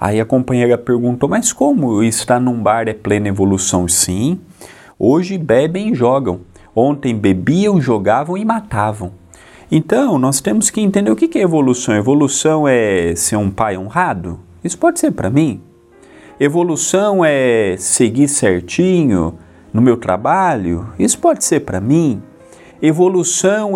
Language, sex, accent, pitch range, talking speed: Portuguese, male, Brazilian, 105-175 Hz, 140 wpm